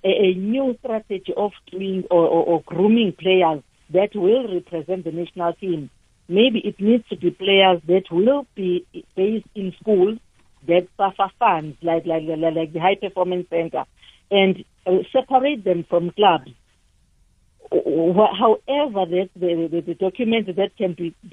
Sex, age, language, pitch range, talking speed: female, 60-79, English, 170-200 Hz, 150 wpm